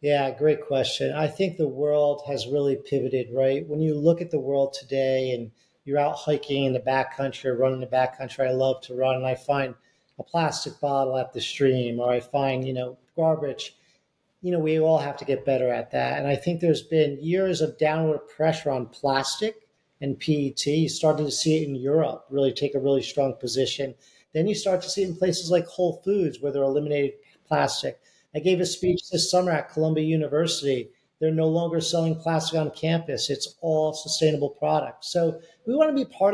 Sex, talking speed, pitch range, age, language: male, 205 wpm, 140-175 Hz, 40-59, English